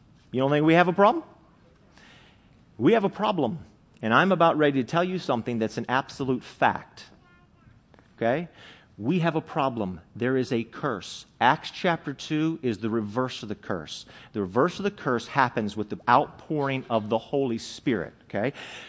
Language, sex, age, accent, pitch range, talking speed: English, male, 40-59, American, 130-190 Hz, 175 wpm